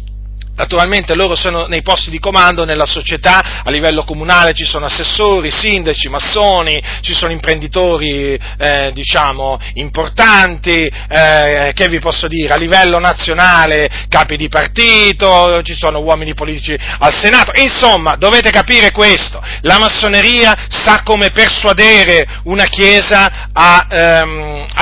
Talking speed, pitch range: 130 wpm, 145-195 Hz